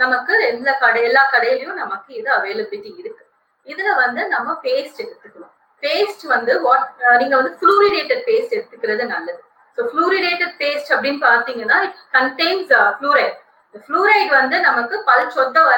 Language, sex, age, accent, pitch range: Tamil, female, 30-49, native, 265-430 Hz